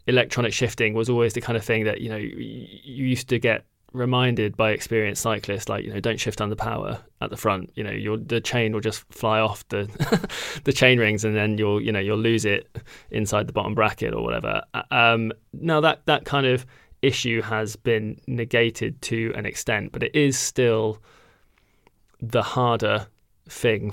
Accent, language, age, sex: British, English, 20-39, male